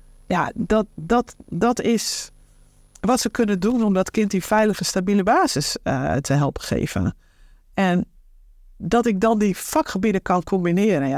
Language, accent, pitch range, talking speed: Dutch, Dutch, 170-225 Hz, 145 wpm